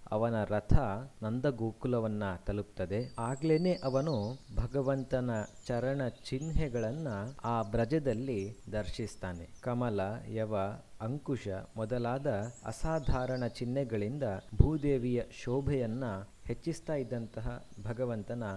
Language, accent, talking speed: Kannada, native, 75 wpm